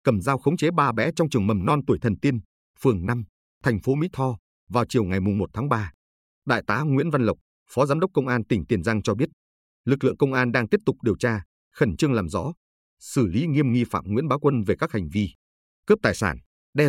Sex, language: male, Vietnamese